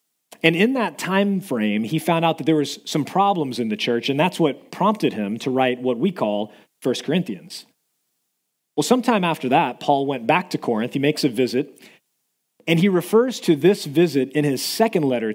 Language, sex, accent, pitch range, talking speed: English, male, American, 130-165 Hz, 200 wpm